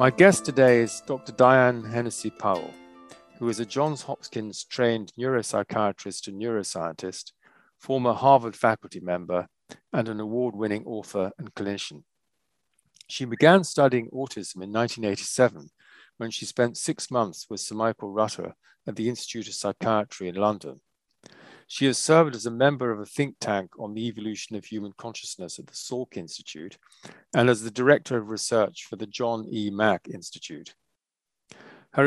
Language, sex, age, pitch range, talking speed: English, male, 40-59, 105-125 Hz, 150 wpm